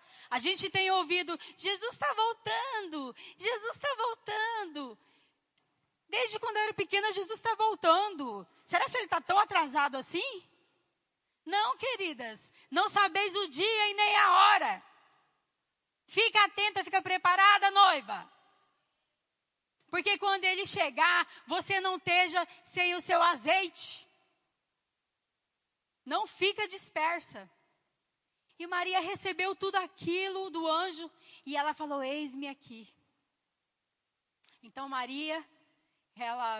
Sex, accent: female, Brazilian